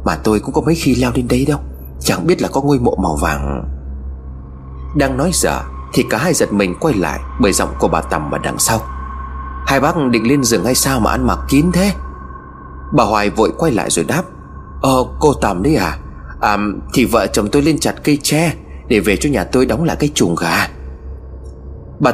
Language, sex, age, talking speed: Vietnamese, male, 30-49, 215 wpm